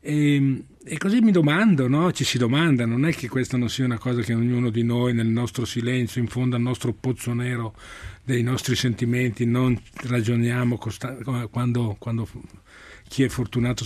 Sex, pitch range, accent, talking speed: male, 115-135 Hz, native, 180 wpm